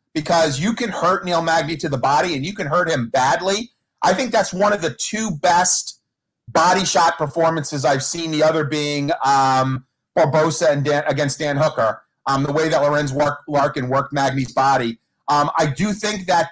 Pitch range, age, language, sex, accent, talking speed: 150-195 Hz, 40-59, English, male, American, 195 wpm